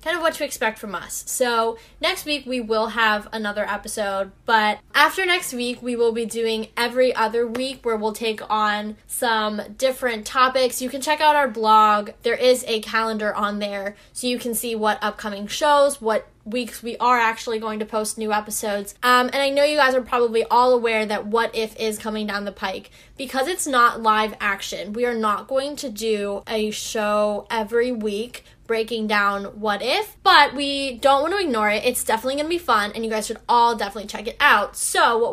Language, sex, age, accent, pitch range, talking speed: English, female, 10-29, American, 215-260 Hz, 205 wpm